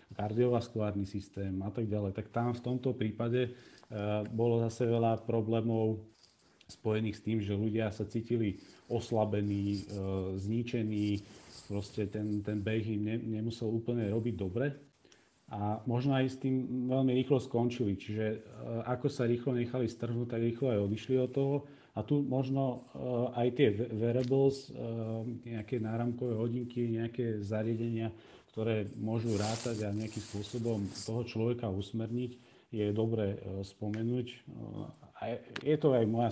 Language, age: Slovak, 40-59